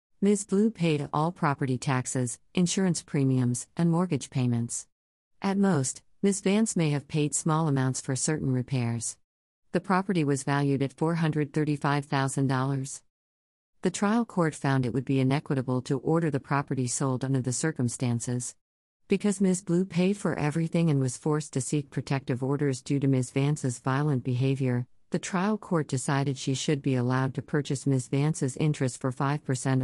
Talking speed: 160 wpm